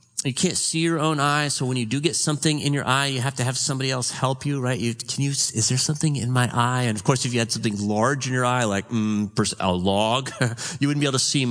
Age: 40-59